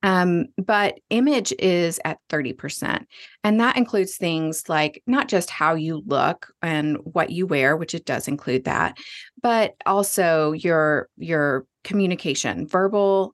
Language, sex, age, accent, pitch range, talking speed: English, female, 30-49, American, 160-200 Hz, 140 wpm